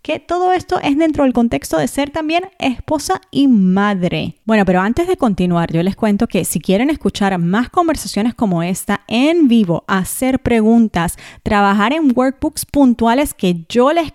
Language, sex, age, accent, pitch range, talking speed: English, female, 30-49, American, 190-255 Hz, 170 wpm